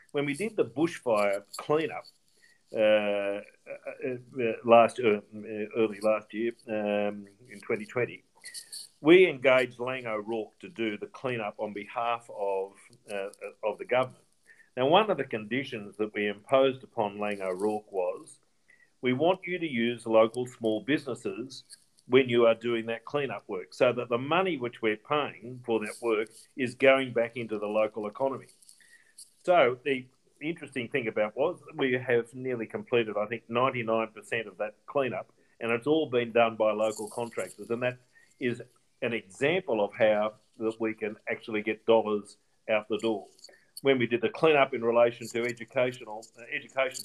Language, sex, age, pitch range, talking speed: English, male, 50-69, 110-135 Hz, 160 wpm